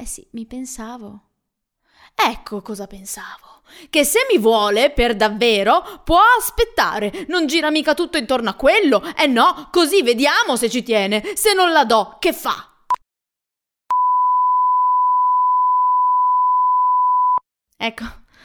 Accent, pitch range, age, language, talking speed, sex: native, 215-360 Hz, 20-39, Italian, 115 wpm, female